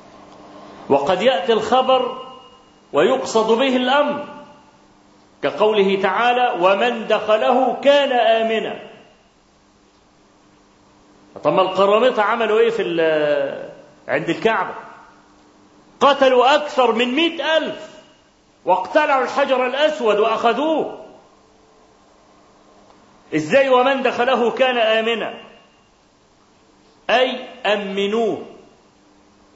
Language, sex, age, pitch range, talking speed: Arabic, male, 40-59, 200-265 Hz, 70 wpm